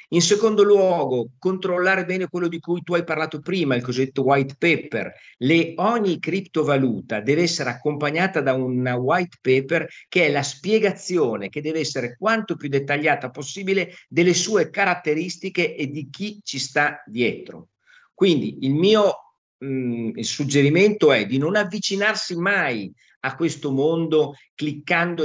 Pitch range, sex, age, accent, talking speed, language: 135-175 Hz, male, 50-69, native, 145 wpm, Italian